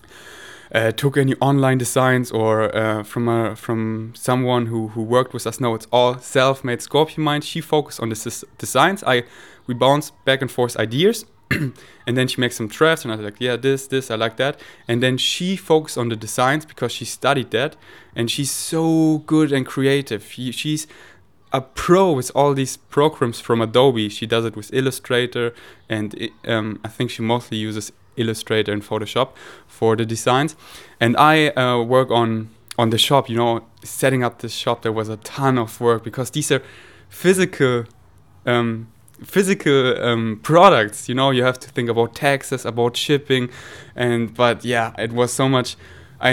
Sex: male